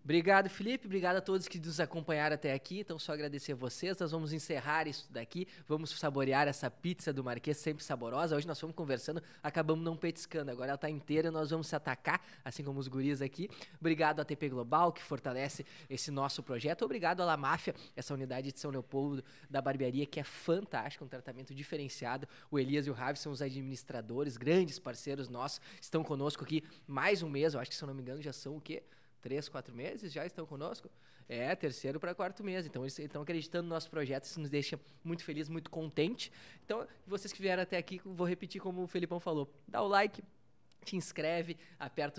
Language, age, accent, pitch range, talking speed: Portuguese, 20-39, Brazilian, 130-165 Hz, 210 wpm